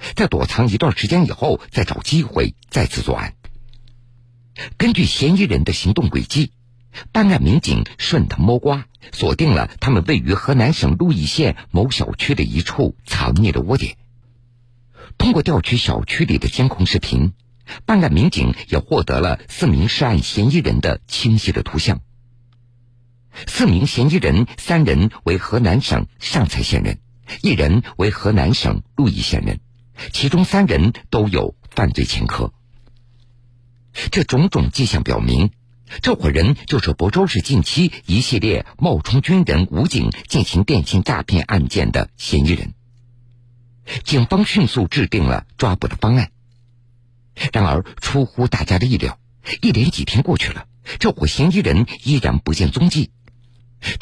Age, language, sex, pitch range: 50-69, Chinese, male, 100-125 Hz